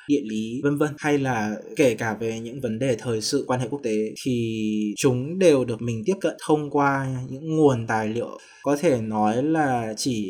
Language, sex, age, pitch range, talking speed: Vietnamese, male, 20-39, 110-140 Hz, 210 wpm